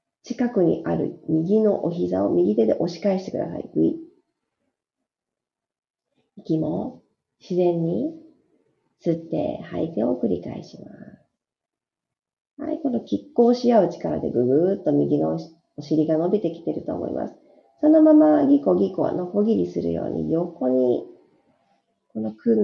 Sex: female